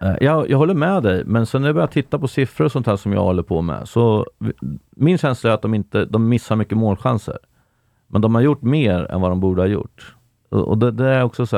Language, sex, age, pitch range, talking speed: Swedish, male, 40-59, 95-115 Hz, 255 wpm